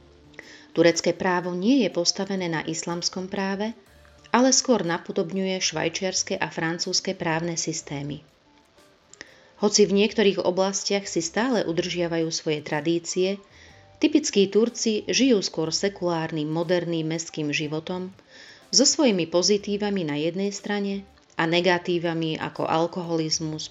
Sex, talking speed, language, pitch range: female, 110 wpm, Slovak, 160-200 Hz